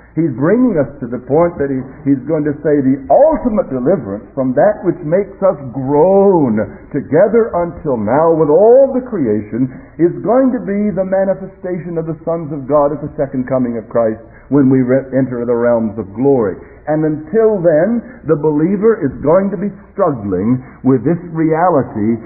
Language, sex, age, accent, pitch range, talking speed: English, male, 60-79, American, 130-185 Hz, 180 wpm